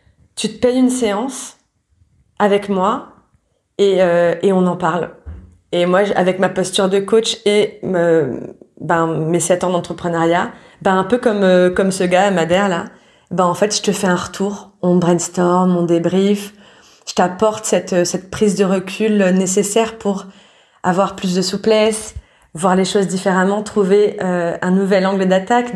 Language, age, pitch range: French, 30-49, 180-205 Hz